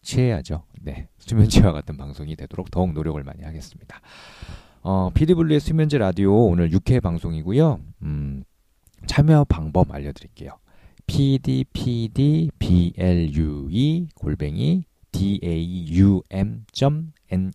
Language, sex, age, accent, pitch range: Korean, male, 40-59, native, 80-110 Hz